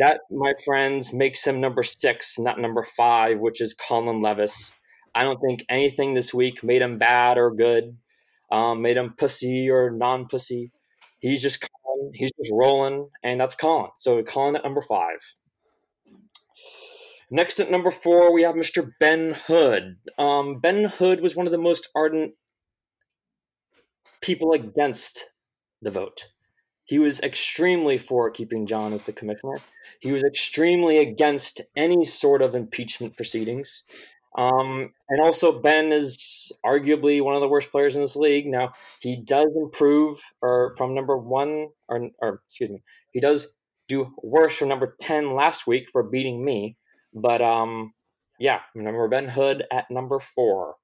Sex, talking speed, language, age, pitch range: male, 155 wpm, English, 20-39, 120-150 Hz